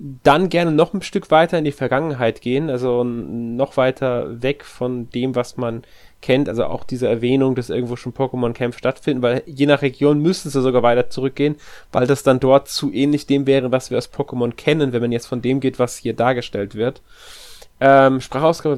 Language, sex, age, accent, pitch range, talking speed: German, male, 20-39, German, 130-155 Hz, 200 wpm